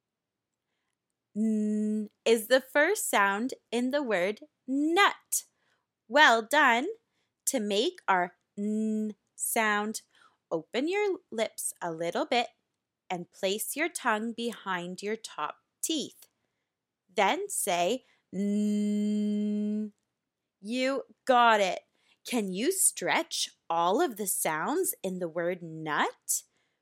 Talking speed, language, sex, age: 105 wpm, English, female, 20-39